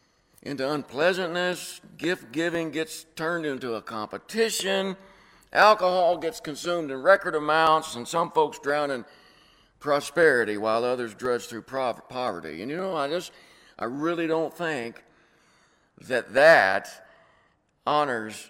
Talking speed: 125 wpm